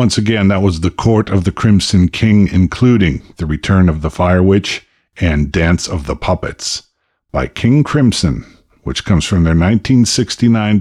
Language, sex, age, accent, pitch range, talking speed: English, male, 50-69, American, 80-105 Hz, 165 wpm